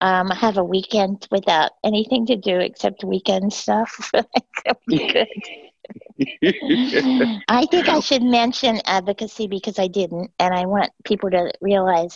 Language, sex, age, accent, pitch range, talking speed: English, female, 40-59, American, 175-195 Hz, 130 wpm